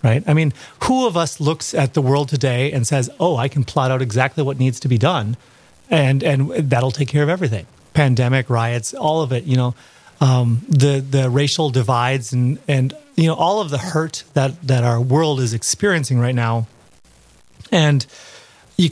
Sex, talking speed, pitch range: male, 185 wpm, 125-155 Hz